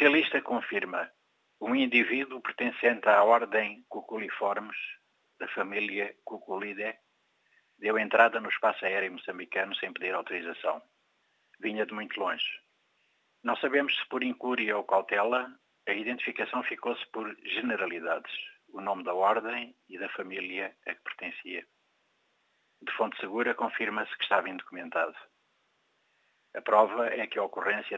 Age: 60-79